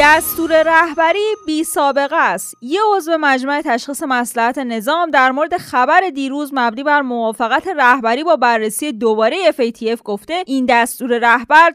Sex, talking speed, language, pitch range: female, 140 wpm, Persian, 225-315 Hz